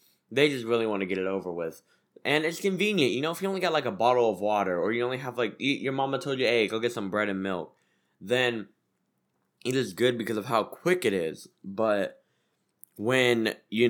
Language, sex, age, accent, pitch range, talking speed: English, male, 10-29, American, 100-145 Hz, 225 wpm